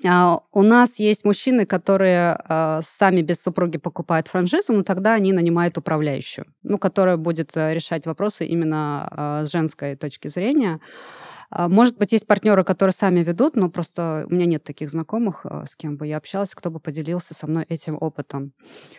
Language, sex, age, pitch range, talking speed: Russian, female, 20-39, 155-190 Hz, 160 wpm